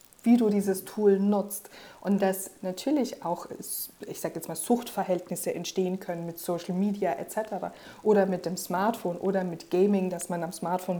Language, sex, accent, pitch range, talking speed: German, female, German, 185-210 Hz, 170 wpm